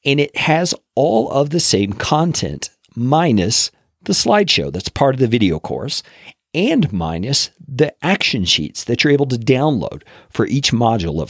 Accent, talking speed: American, 165 wpm